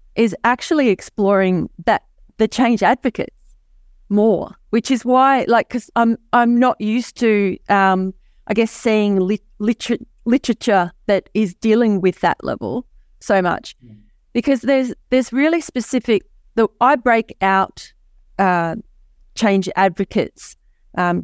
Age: 30-49